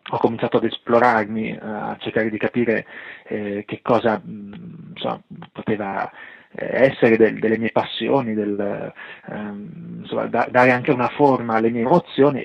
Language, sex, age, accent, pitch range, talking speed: Italian, male, 30-49, native, 110-135 Hz, 150 wpm